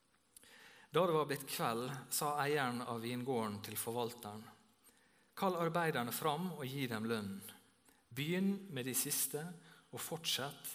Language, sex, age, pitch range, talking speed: English, male, 50-69, 115-165 Hz, 135 wpm